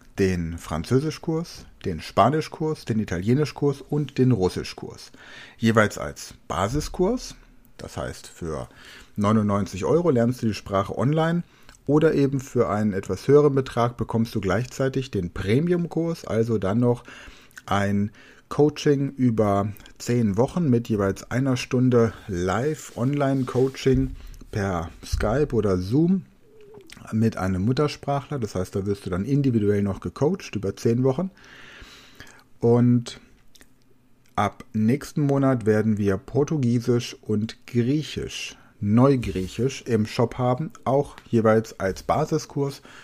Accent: German